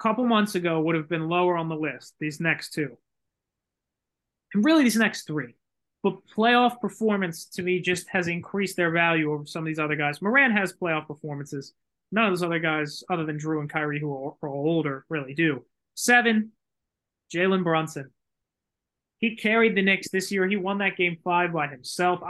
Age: 20-39